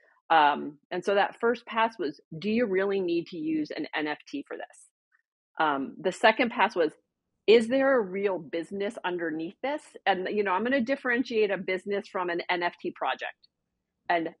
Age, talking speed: 40-59, 180 wpm